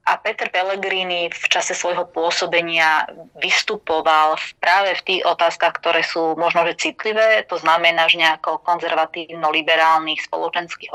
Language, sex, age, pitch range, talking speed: Slovak, female, 20-39, 155-175 Hz, 125 wpm